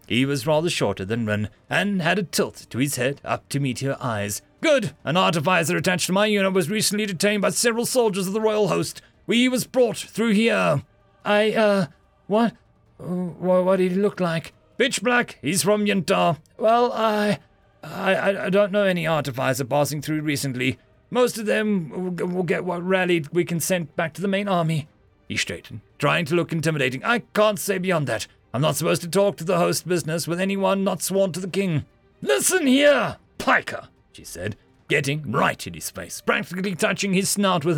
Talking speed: 190 wpm